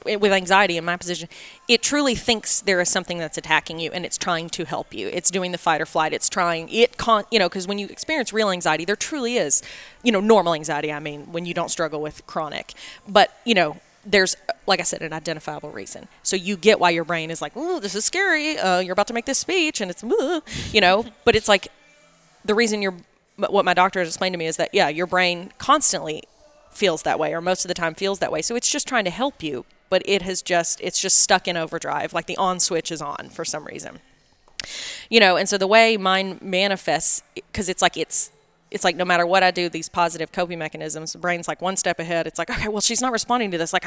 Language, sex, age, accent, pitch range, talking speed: English, female, 20-39, American, 165-205 Hz, 250 wpm